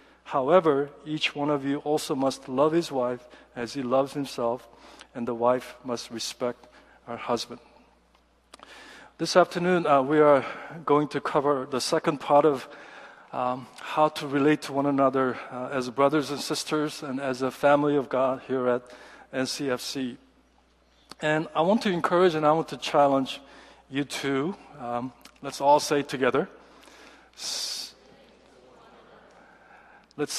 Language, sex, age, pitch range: Korean, male, 50-69, 130-155 Hz